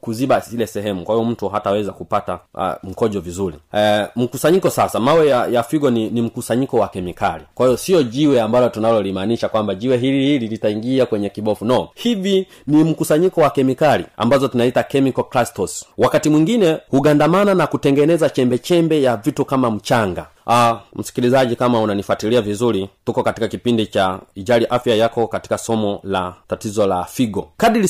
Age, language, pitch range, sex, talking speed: 30-49, Swahili, 105-145 Hz, male, 160 wpm